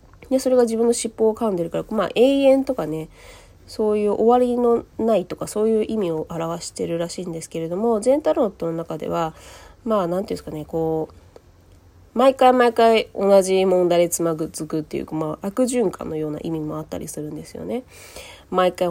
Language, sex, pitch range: Japanese, female, 155-215 Hz